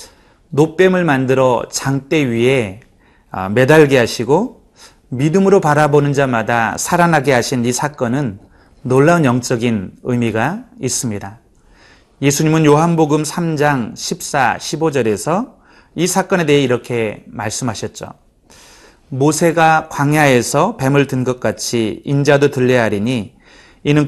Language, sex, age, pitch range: Korean, male, 30-49, 125-160 Hz